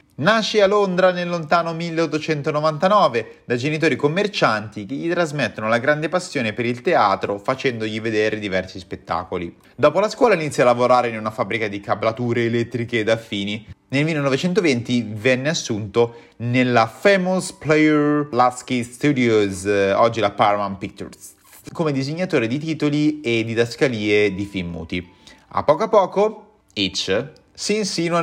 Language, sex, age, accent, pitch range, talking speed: Italian, male, 30-49, native, 110-150 Hz, 140 wpm